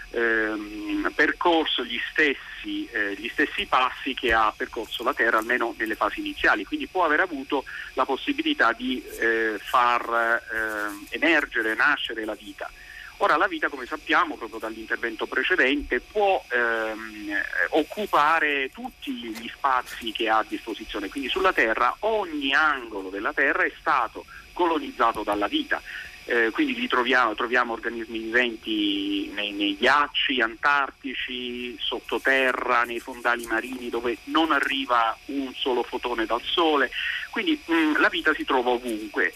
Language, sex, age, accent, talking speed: Italian, male, 40-59, native, 135 wpm